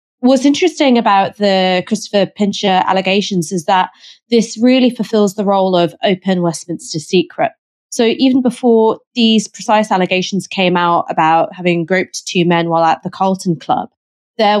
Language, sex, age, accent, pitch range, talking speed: English, female, 20-39, British, 175-220 Hz, 150 wpm